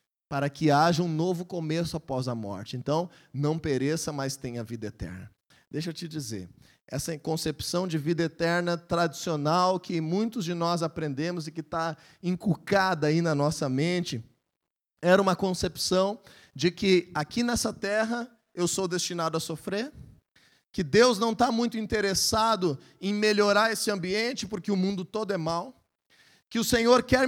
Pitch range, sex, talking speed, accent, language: 155-210 Hz, male, 160 wpm, Brazilian, Portuguese